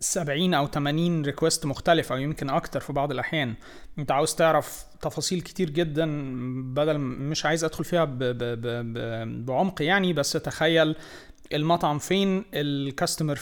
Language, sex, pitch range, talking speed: Arabic, male, 140-170 Hz, 145 wpm